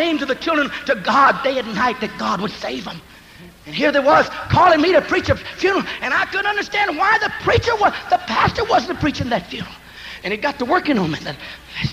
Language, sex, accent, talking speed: English, male, American, 230 wpm